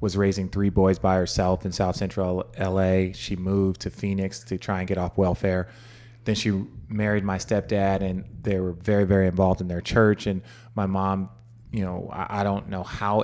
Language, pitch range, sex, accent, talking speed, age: English, 95-110 Hz, male, American, 195 wpm, 20-39